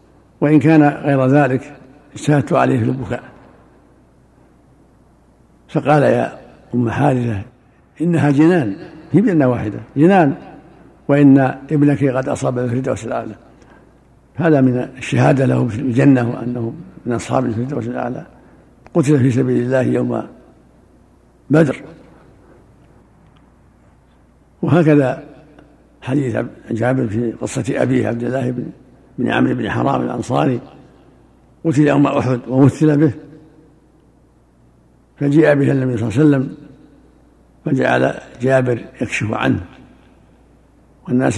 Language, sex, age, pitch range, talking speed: Arabic, male, 60-79, 120-145 Hz, 105 wpm